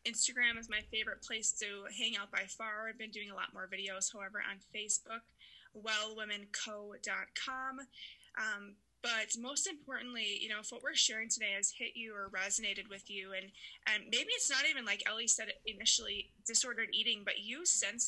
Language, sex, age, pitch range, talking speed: English, female, 20-39, 205-235 Hz, 175 wpm